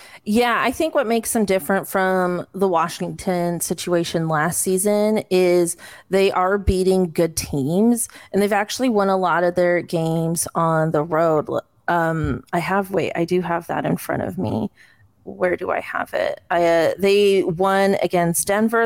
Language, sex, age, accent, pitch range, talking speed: English, female, 30-49, American, 170-195 Hz, 170 wpm